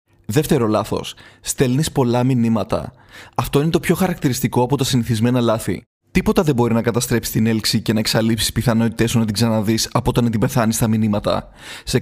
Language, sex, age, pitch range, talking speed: Greek, male, 20-39, 115-145 Hz, 180 wpm